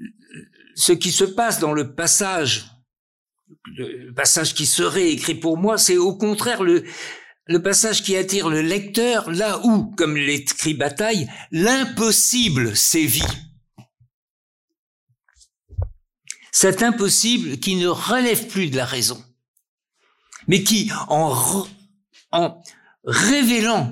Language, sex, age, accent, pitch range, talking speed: French, male, 60-79, French, 145-215 Hz, 115 wpm